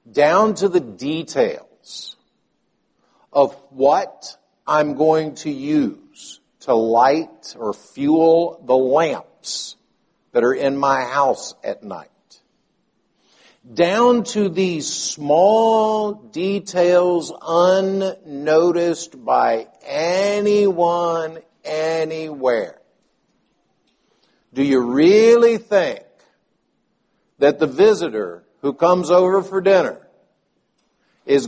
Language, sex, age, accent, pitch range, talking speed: English, male, 60-79, American, 155-205 Hz, 85 wpm